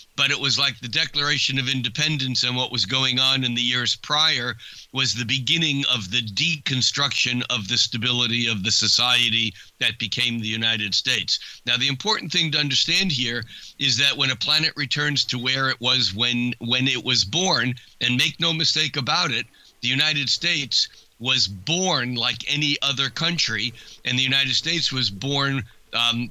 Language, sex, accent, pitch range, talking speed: English, male, American, 115-140 Hz, 180 wpm